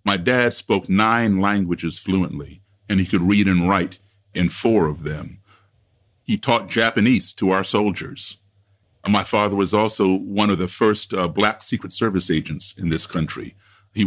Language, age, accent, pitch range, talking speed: English, 50-69, American, 90-100 Hz, 165 wpm